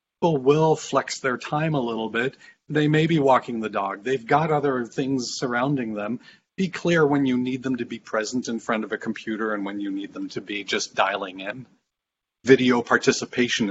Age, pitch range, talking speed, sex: 40-59, 115-150 Hz, 200 wpm, male